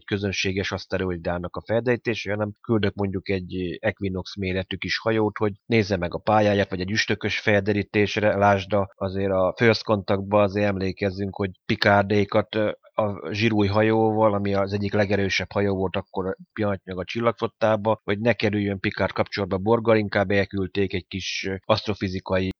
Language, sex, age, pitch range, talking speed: Hungarian, male, 30-49, 100-115 Hz, 145 wpm